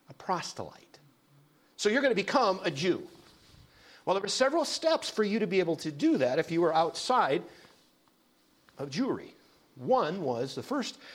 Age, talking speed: 50-69, 165 wpm